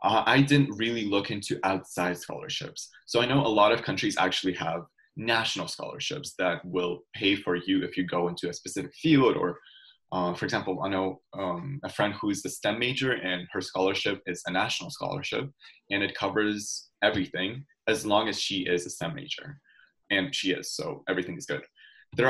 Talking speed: 190 wpm